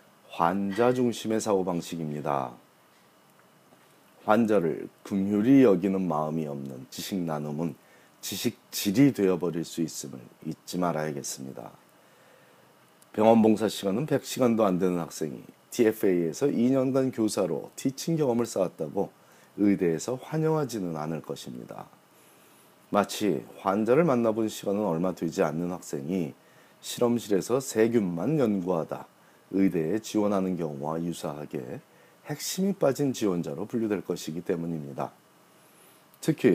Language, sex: Korean, male